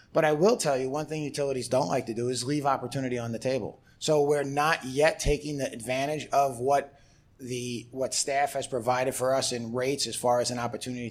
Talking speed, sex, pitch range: 220 wpm, male, 120-145 Hz